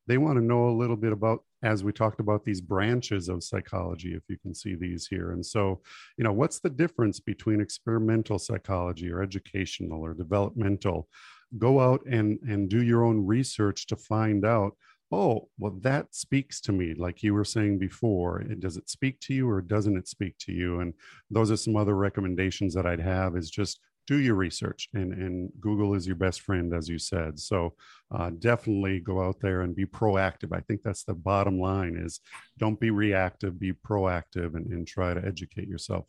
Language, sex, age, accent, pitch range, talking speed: English, male, 50-69, American, 90-110 Hz, 200 wpm